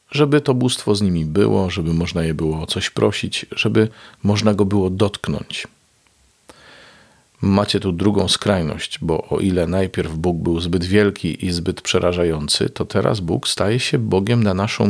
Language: Polish